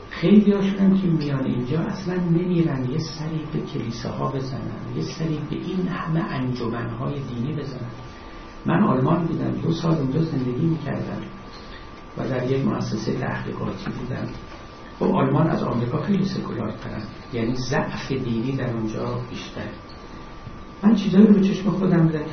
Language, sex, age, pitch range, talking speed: Persian, male, 60-79, 115-165 Hz, 140 wpm